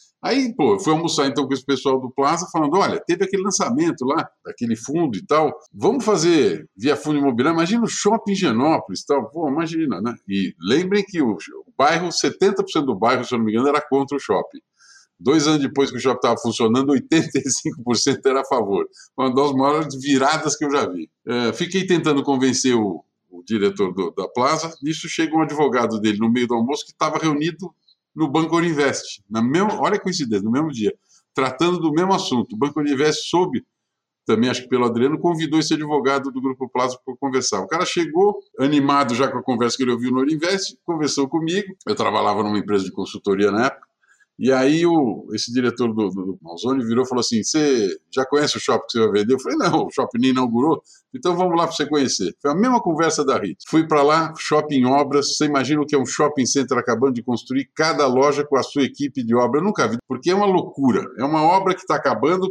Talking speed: 215 wpm